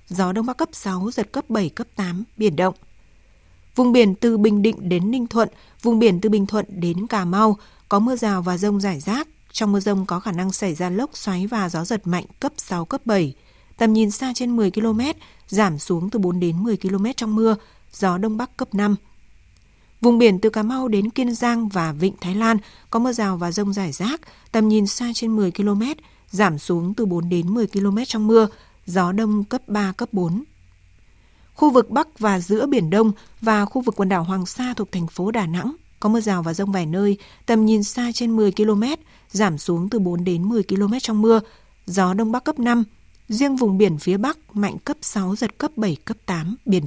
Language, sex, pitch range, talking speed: Vietnamese, female, 185-230 Hz, 220 wpm